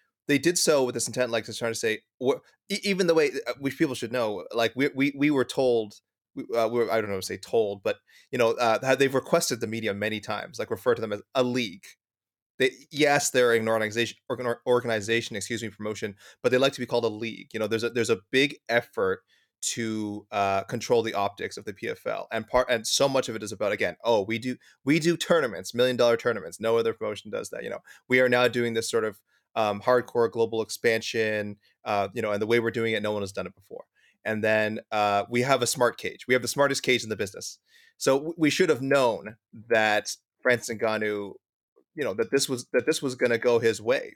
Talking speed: 240 wpm